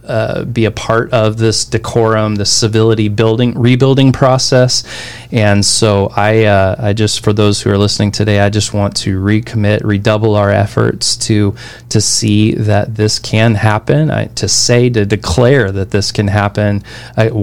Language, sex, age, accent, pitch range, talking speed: English, male, 20-39, American, 100-115 Hz, 170 wpm